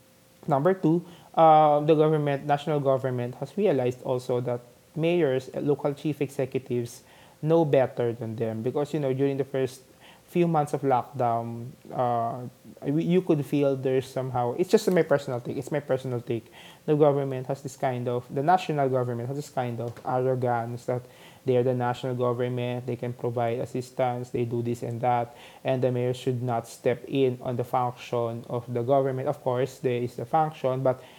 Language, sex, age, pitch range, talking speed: English, male, 20-39, 125-145 Hz, 180 wpm